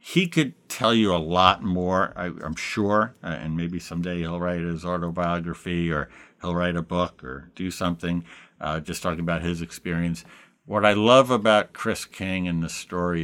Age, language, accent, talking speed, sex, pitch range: 60-79, English, American, 175 wpm, male, 85-110 Hz